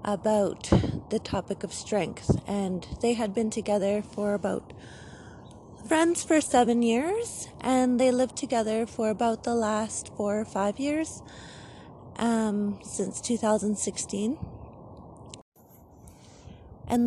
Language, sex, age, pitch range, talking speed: English, female, 30-49, 185-225 Hz, 115 wpm